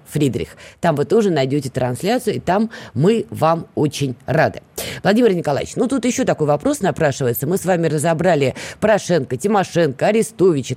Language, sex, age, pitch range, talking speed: Russian, female, 20-39, 145-195 Hz, 150 wpm